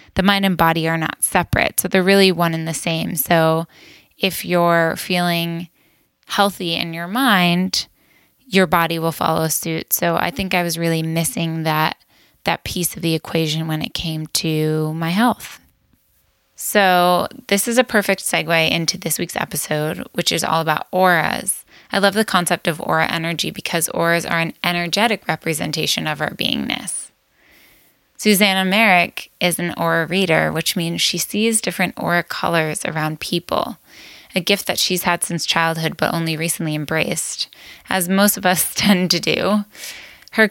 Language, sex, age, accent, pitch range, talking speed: English, female, 10-29, American, 165-190 Hz, 165 wpm